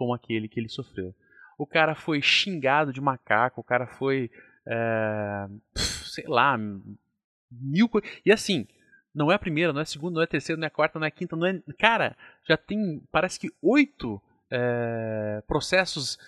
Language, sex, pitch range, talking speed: Portuguese, male, 125-205 Hz, 190 wpm